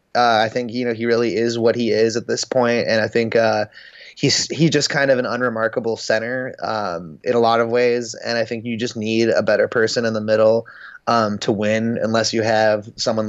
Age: 20-39